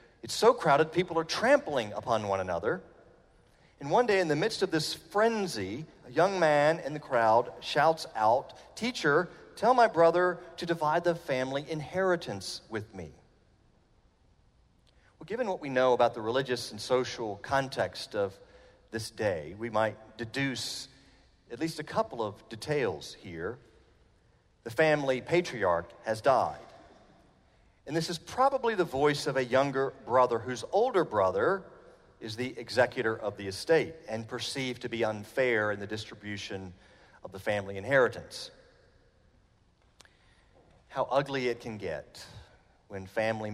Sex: male